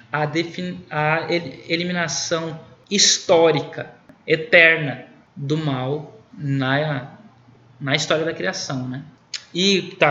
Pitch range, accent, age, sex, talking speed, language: 150-175 Hz, Brazilian, 20-39, male, 95 wpm, Portuguese